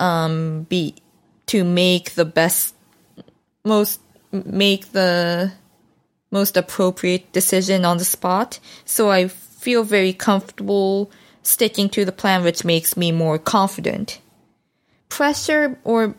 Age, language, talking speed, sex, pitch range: 20-39, English, 115 wpm, female, 180-210 Hz